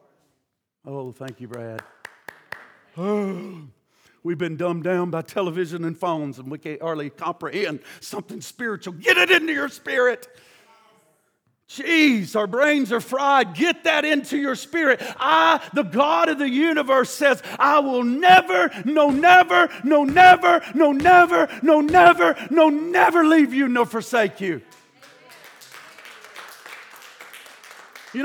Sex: male